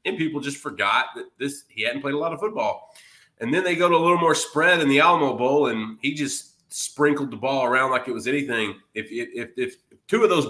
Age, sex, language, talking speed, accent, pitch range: 30-49, male, English, 250 wpm, American, 125-155 Hz